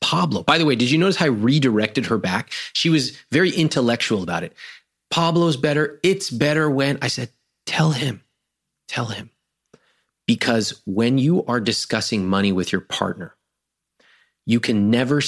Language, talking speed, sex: English, 160 wpm, male